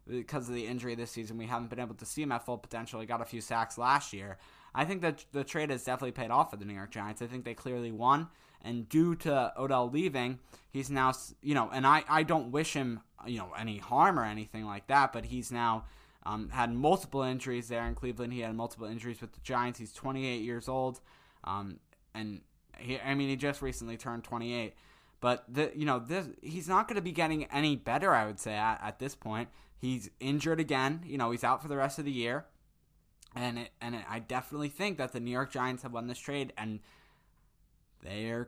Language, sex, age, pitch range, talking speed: English, male, 10-29, 115-140 Hz, 230 wpm